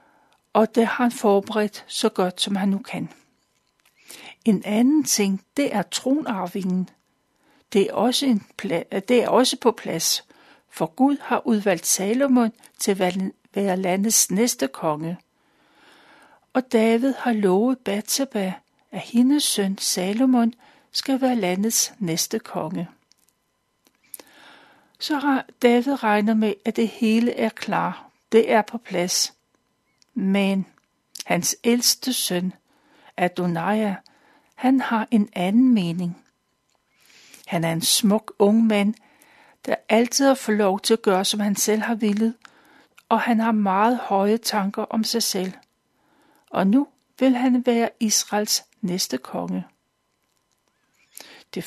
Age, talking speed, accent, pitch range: 60-79, 125 wpm, native, 195-255 Hz